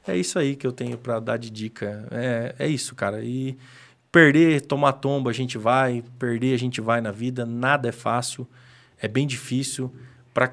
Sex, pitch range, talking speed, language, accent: male, 120-140 Hz, 195 wpm, Portuguese, Brazilian